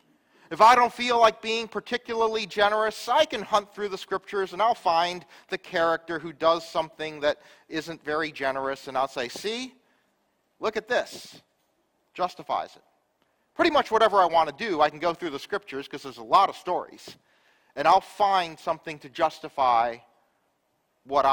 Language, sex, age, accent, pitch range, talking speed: English, male, 40-59, American, 155-215 Hz, 170 wpm